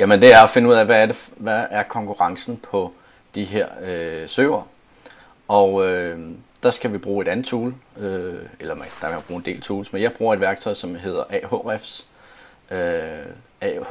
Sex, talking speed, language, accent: male, 195 wpm, Danish, native